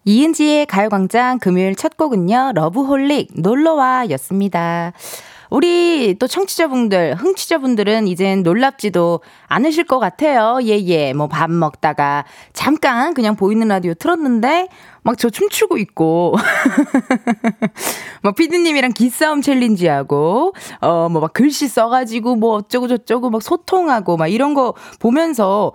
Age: 20-39